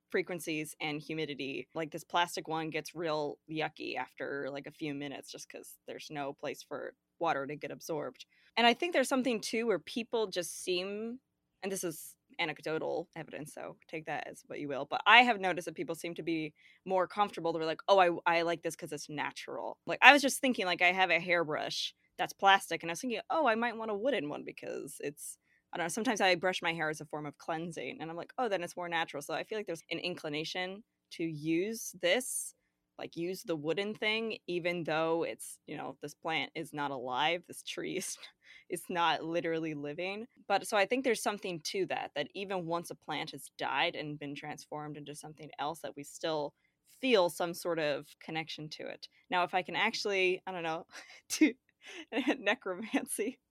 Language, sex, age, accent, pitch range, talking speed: English, female, 20-39, American, 155-205 Hz, 210 wpm